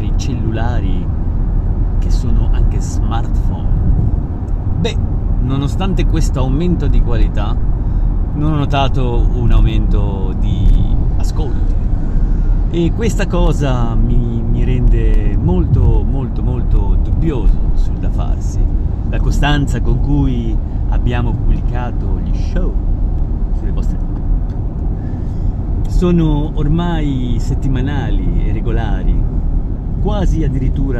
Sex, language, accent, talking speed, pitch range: male, Italian, native, 95 wpm, 85-120 Hz